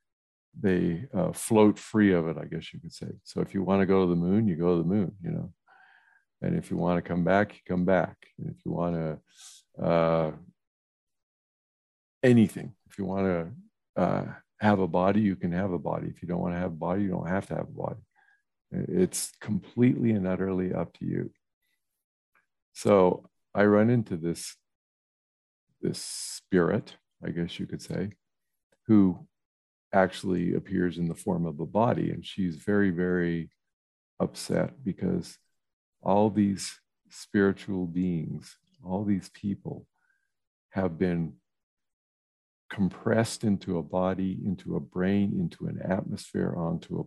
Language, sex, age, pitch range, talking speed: English, male, 50-69, 85-100 Hz, 160 wpm